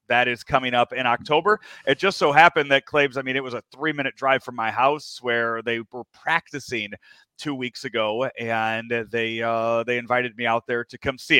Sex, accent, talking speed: male, American, 210 wpm